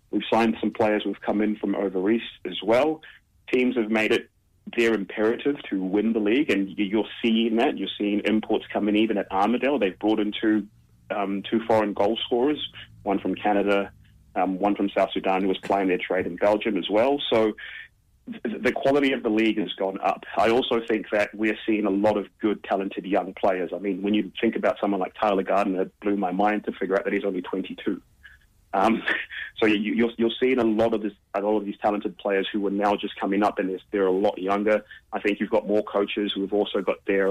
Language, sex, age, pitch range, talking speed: English, male, 30-49, 100-110 Hz, 225 wpm